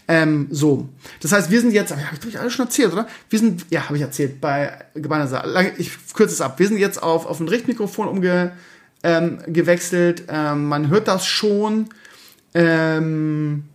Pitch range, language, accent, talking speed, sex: 150-175 Hz, German, German, 180 wpm, male